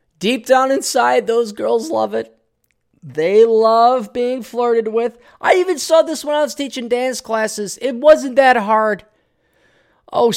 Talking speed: 155 wpm